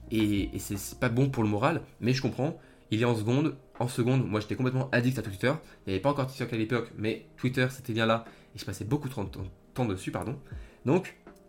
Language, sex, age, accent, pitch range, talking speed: French, male, 20-39, French, 105-135 Hz, 260 wpm